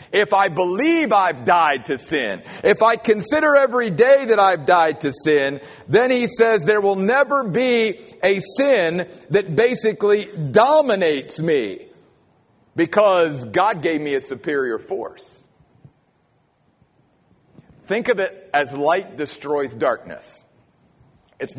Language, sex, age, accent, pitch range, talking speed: English, male, 50-69, American, 145-220 Hz, 125 wpm